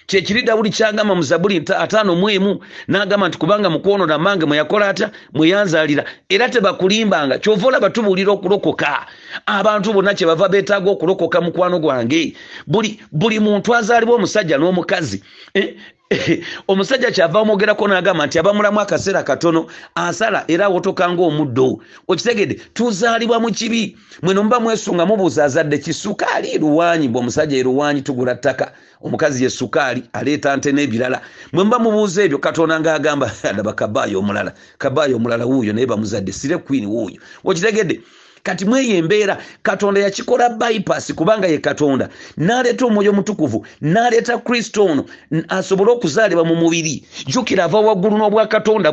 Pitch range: 165-220 Hz